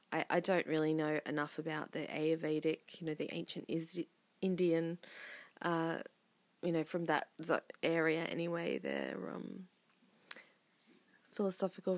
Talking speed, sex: 120 wpm, female